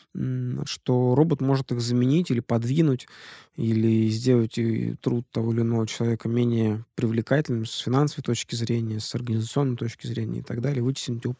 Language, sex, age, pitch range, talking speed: Russian, male, 20-39, 115-130 Hz, 155 wpm